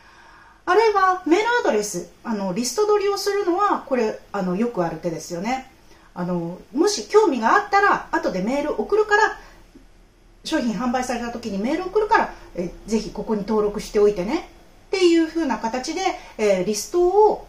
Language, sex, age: Japanese, female, 40-59